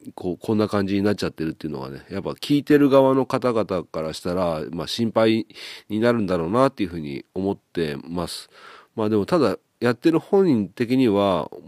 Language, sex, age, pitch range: Japanese, male, 40-59, 80-110 Hz